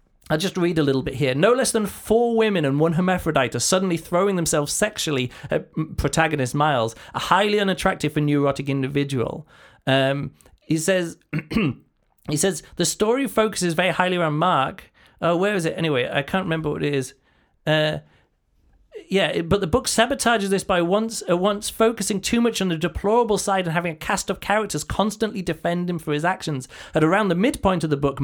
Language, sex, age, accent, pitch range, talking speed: English, male, 30-49, British, 150-195 Hz, 185 wpm